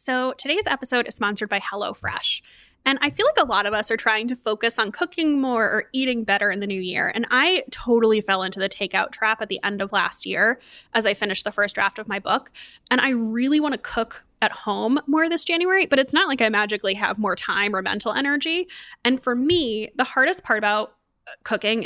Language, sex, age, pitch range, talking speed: English, female, 20-39, 215-265 Hz, 230 wpm